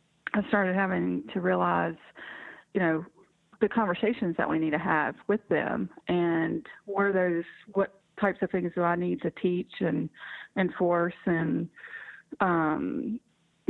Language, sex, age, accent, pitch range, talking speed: English, female, 30-49, American, 170-200 Hz, 140 wpm